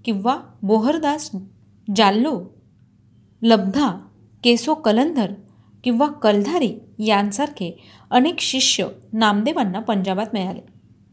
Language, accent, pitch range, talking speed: Marathi, native, 195-260 Hz, 75 wpm